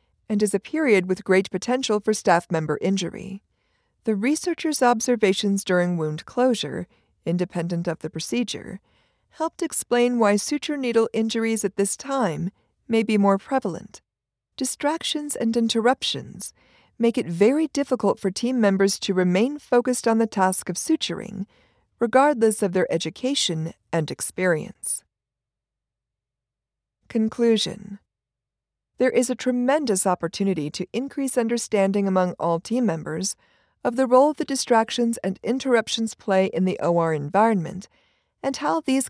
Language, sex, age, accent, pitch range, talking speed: English, female, 40-59, American, 185-245 Hz, 130 wpm